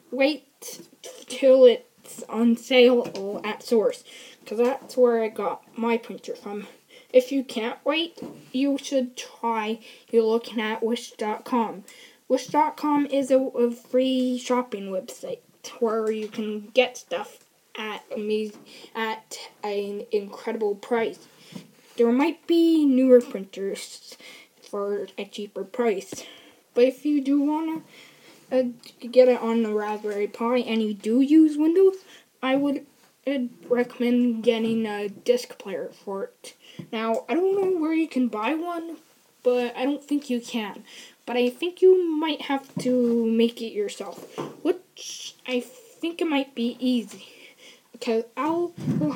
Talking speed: 140 wpm